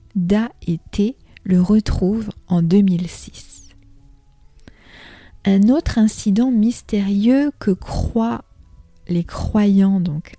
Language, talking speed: French, 90 wpm